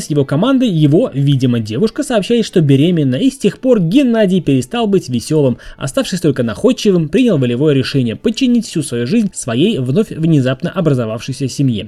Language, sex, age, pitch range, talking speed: Russian, male, 20-39, 140-205 Hz, 155 wpm